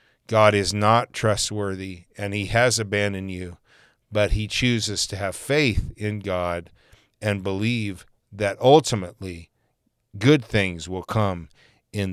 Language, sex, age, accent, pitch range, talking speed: English, male, 50-69, American, 95-115 Hz, 130 wpm